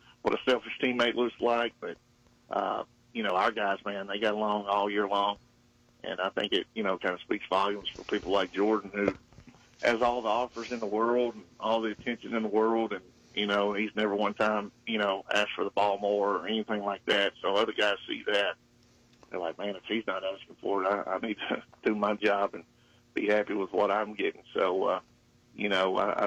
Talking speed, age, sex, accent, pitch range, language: 225 wpm, 40-59, male, American, 100-115 Hz, English